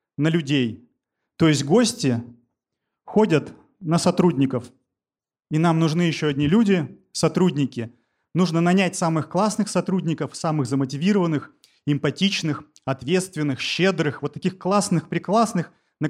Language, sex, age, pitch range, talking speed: Russian, male, 30-49, 150-195 Hz, 110 wpm